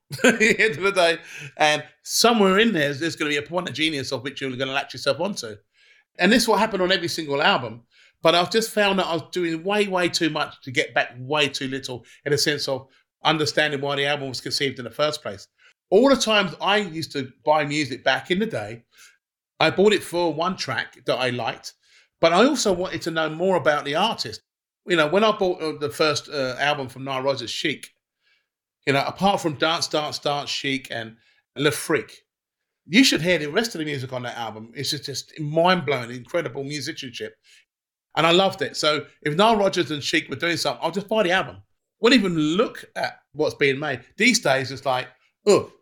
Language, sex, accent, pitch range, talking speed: English, male, British, 135-185 Hz, 225 wpm